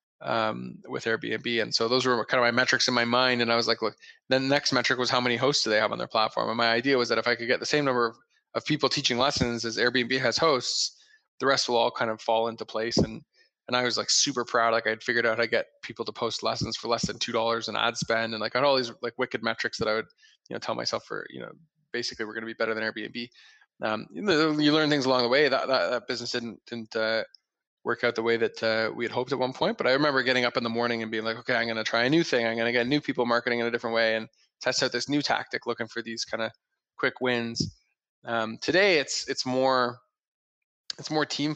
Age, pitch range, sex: 20-39, 115-125 Hz, male